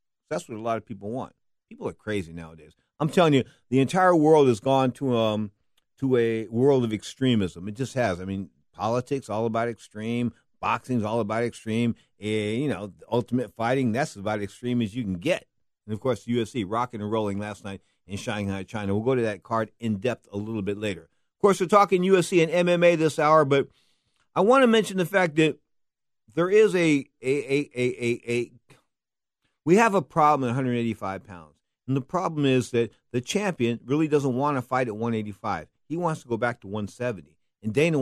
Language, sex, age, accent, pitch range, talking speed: English, male, 50-69, American, 105-135 Hz, 215 wpm